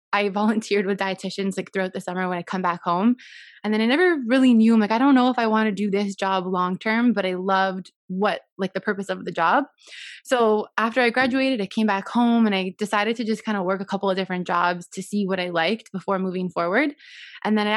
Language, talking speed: English, 255 wpm